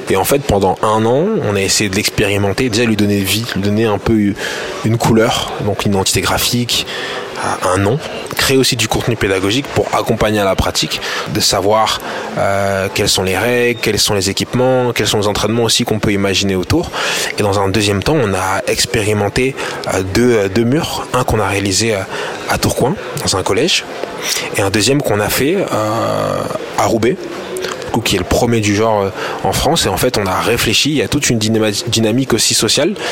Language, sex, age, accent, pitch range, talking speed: French, male, 20-39, French, 100-120 Hz, 200 wpm